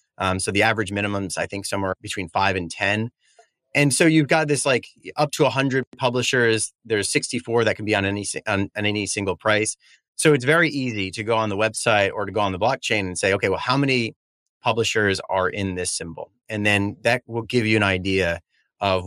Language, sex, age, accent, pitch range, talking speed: English, male, 30-49, American, 95-120 Hz, 220 wpm